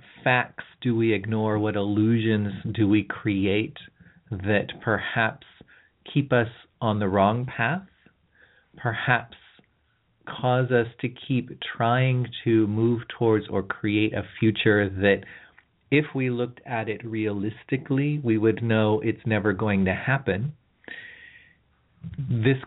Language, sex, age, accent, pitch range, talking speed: English, male, 40-59, American, 100-120 Hz, 125 wpm